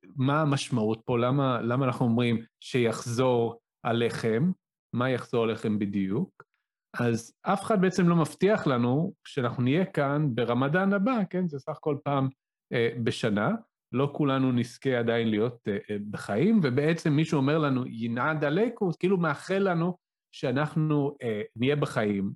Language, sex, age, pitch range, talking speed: Hebrew, male, 30-49, 120-155 Hz, 140 wpm